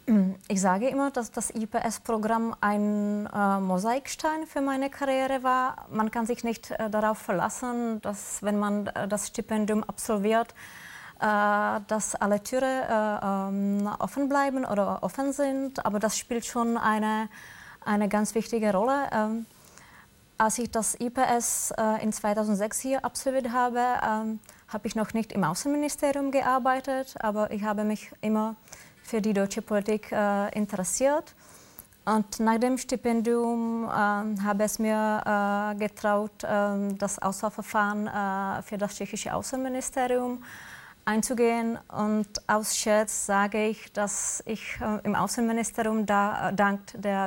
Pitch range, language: 205-235 Hz, German